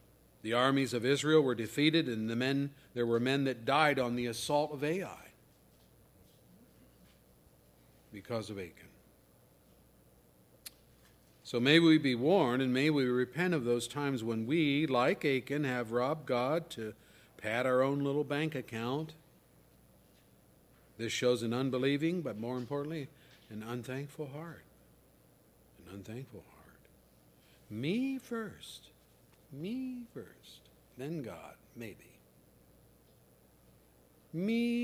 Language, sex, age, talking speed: English, male, 50-69, 115 wpm